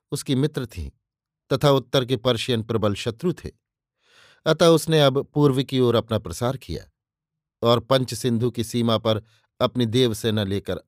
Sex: male